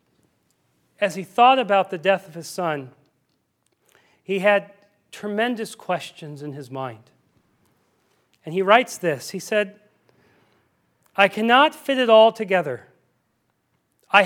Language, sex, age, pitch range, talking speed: English, male, 40-59, 180-230 Hz, 120 wpm